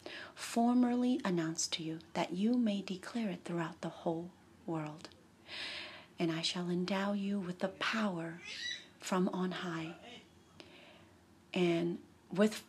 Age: 30-49